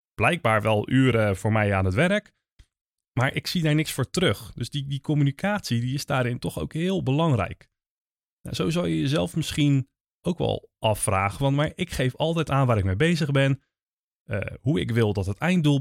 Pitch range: 110-145 Hz